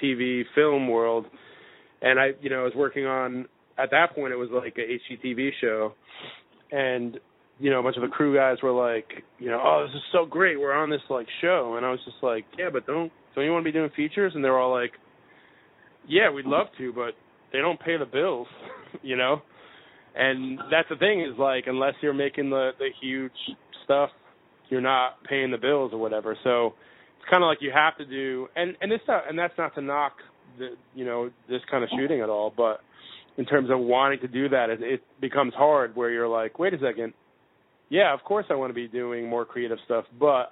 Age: 20-39